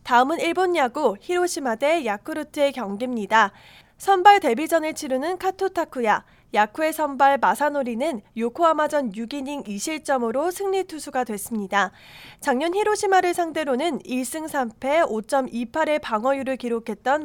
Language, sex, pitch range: Korean, female, 225-330 Hz